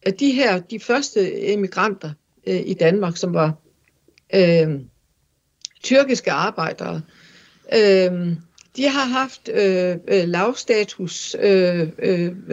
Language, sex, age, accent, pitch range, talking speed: Danish, female, 60-79, native, 175-225 Hz, 75 wpm